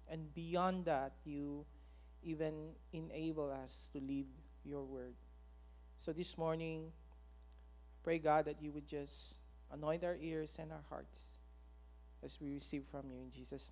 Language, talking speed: English, 145 wpm